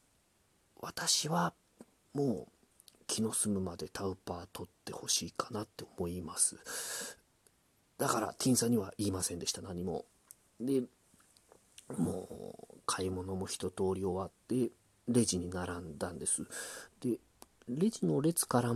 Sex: male